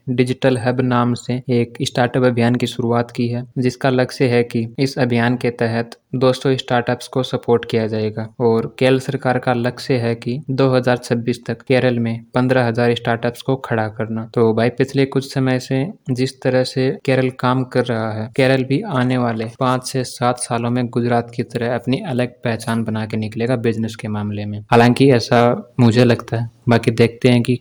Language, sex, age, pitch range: Hindi, male, 20-39, 115-125 Hz